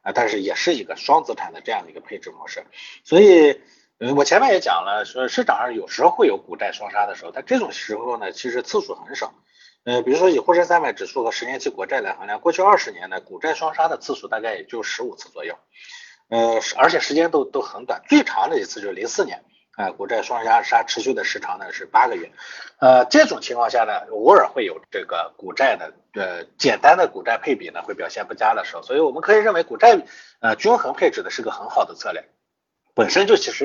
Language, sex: Chinese, male